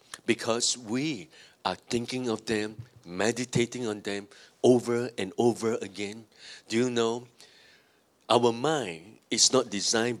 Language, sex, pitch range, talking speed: English, male, 105-125 Hz, 125 wpm